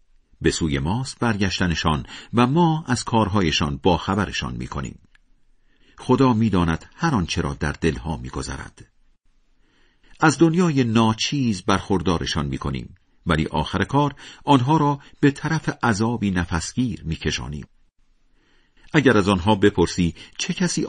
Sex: male